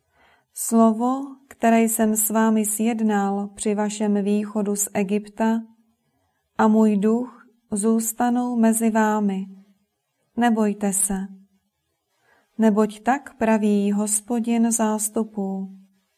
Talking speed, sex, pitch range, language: 90 wpm, female, 205-230 Hz, Czech